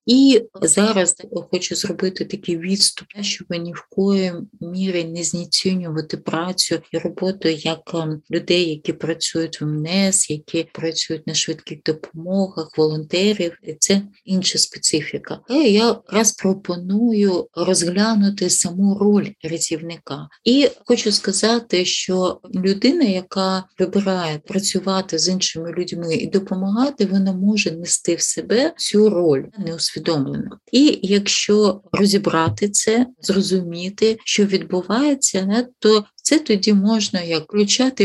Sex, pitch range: female, 165-205 Hz